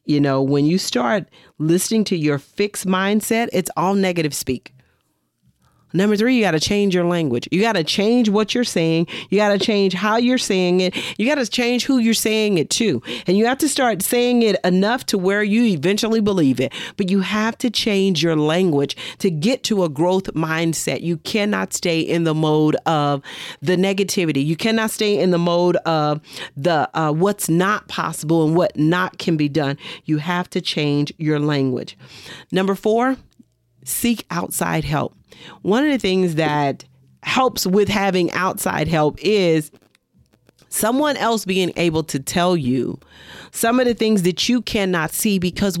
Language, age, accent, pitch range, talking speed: English, 40-59, American, 155-215 Hz, 180 wpm